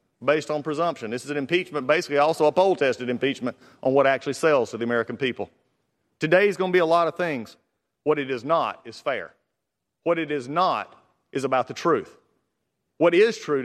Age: 40-59